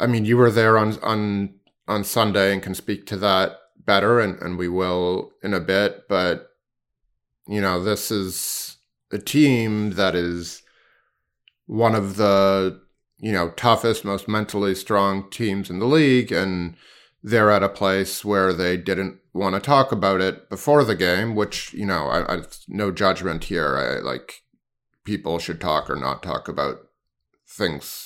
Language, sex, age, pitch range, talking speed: English, male, 30-49, 90-110 Hz, 165 wpm